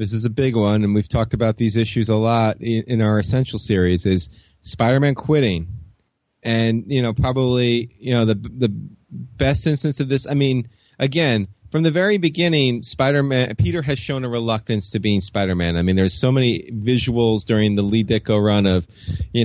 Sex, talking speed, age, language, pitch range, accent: male, 190 wpm, 30-49, English, 105-125 Hz, American